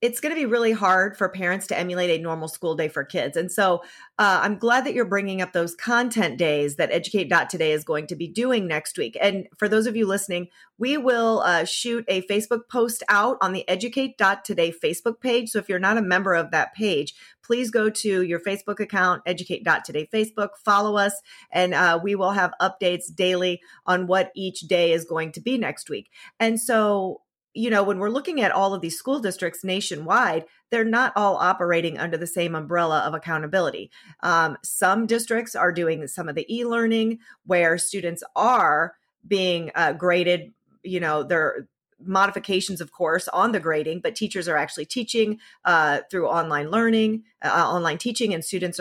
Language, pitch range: English, 175-225 Hz